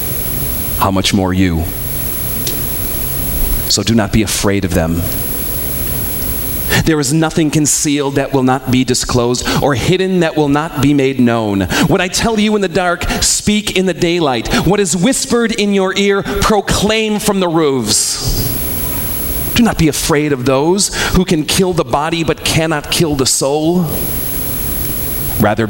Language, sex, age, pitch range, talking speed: English, male, 40-59, 105-165 Hz, 155 wpm